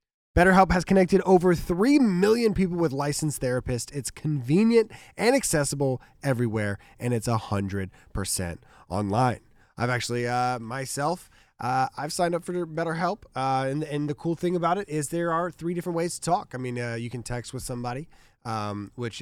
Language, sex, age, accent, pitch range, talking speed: English, male, 20-39, American, 110-165 Hz, 170 wpm